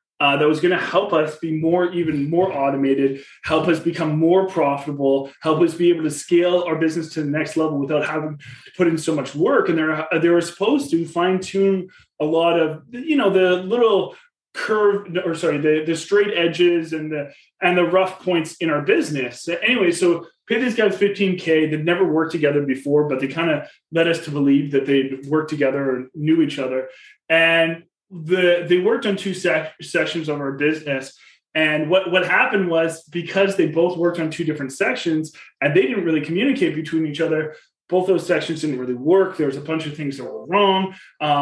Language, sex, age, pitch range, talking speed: English, male, 20-39, 155-185 Hz, 205 wpm